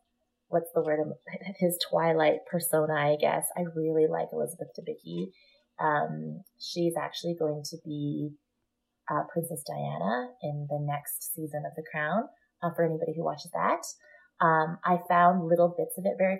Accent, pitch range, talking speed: American, 155-185 Hz, 160 wpm